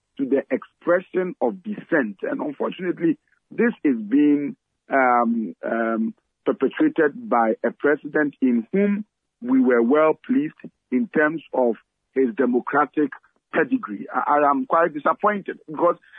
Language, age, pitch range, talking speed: English, 50-69, 130-220 Hz, 120 wpm